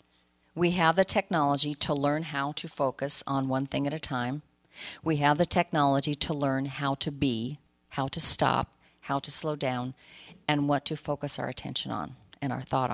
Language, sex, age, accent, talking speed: English, female, 40-59, American, 190 wpm